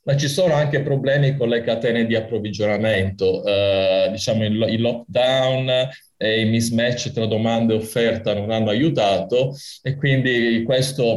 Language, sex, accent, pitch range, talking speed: Italian, male, native, 110-140 Hz, 145 wpm